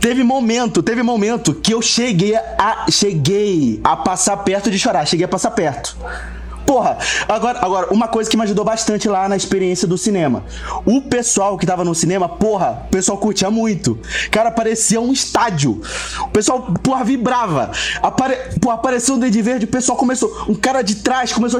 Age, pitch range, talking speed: 20-39, 195-250 Hz, 185 wpm